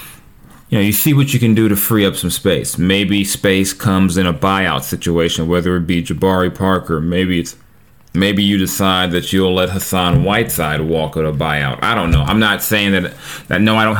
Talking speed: 215 wpm